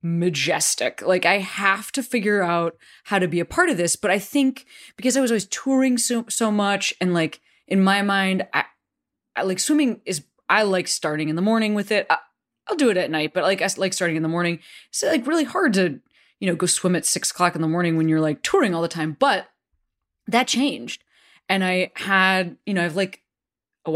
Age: 20-39